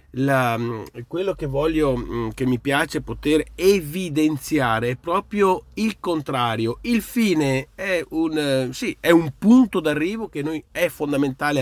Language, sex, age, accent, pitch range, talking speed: Italian, male, 40-59, native, 120-155 Hz, 135 wpm